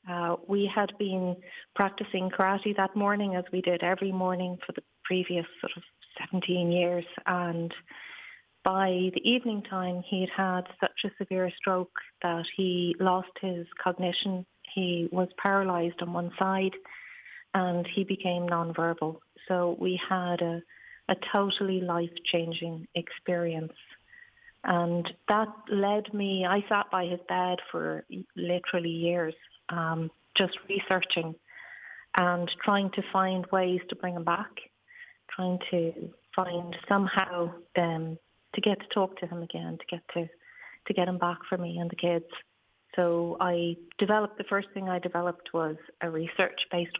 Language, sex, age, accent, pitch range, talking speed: English, female, 40-59, Irish, 175-195 Hz, 145 wpm